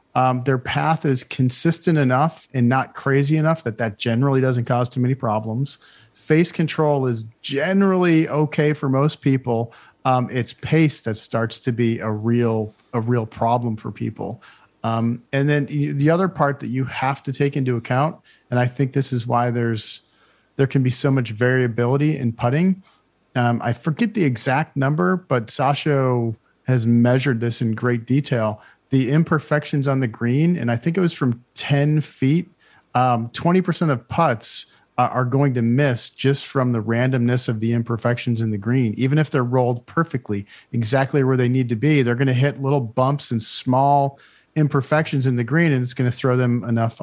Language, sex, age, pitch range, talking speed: English, male, 40-59, 120-145 Hz, 185 wpm